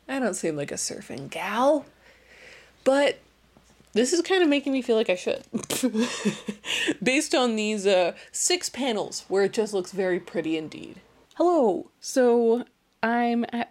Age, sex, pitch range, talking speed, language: 20-39, female, 195-275 Hz, 155 wpm, English